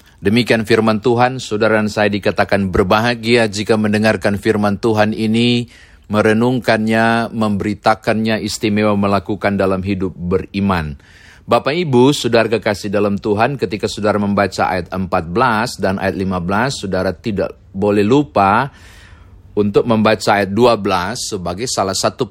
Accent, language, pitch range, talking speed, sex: native, Indonesian, 95-115 Hz, 120 wpm, male